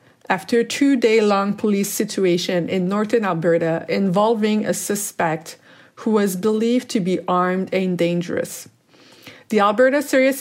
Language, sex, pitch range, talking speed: English, female, 180-220 Hz, 125 wpm